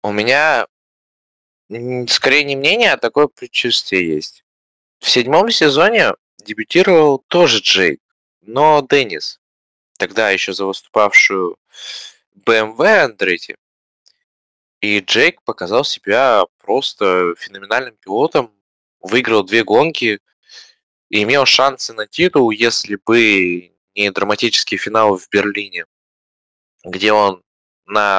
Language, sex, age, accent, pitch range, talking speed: Russian, male, 20-39, native, 95-120 Hz, 100 wpm